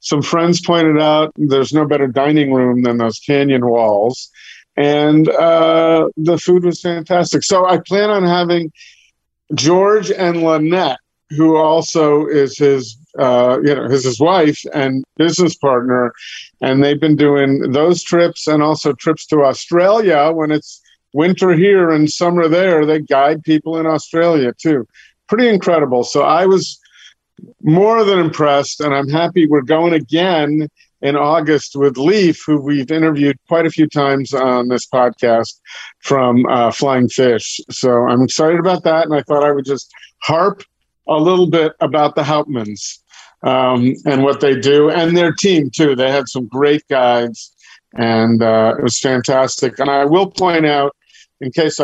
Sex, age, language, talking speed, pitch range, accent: male, 50-69, English, 160 wpm, 135-165 Hz, American